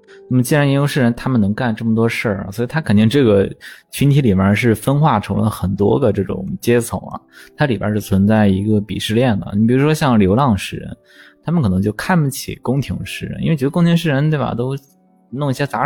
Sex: male